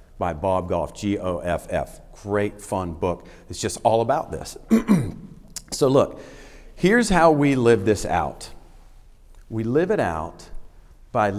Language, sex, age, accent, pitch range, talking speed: English, male, 40-59, American, 95-145 Hz, 130 wpm